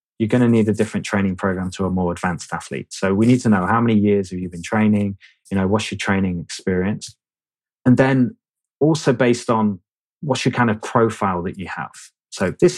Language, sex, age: English, male, 20-39